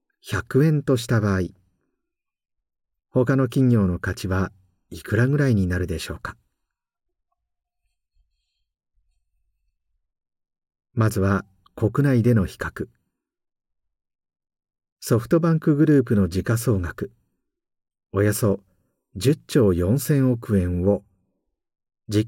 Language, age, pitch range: Japanese, 50-69, 90-135 Hz